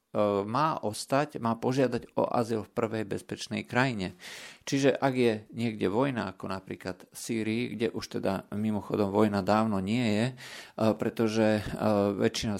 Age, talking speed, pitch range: 50-69, 135 wpm, 100-115 Hz